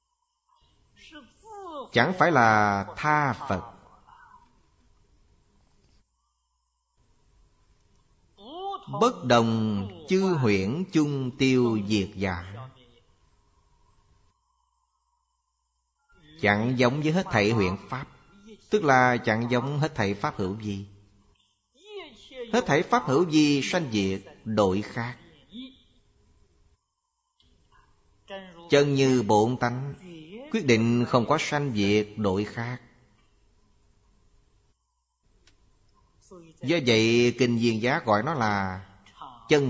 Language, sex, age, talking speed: Vietnamese, male, 30-49, 90 wpm